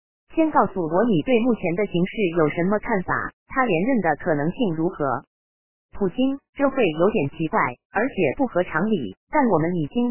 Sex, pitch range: female, 160-250 Hz